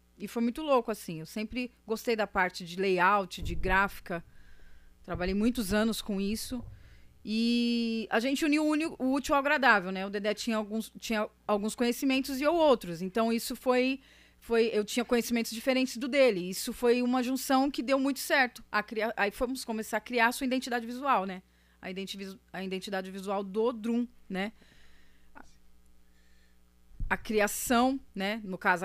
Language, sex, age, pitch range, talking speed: Portuguese, female, 30-49, 200-270 Hz, 160 wpm